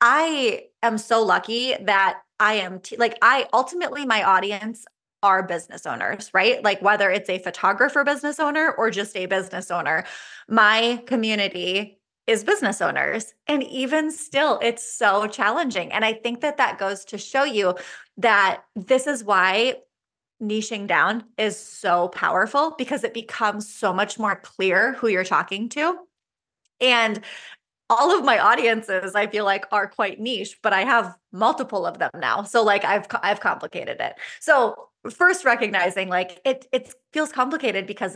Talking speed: 160 wpm